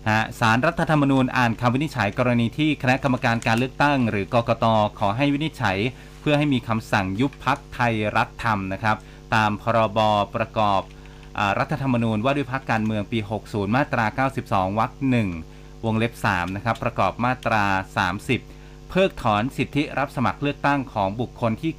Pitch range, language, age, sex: 110-135 Hz, Thai, 30-49, male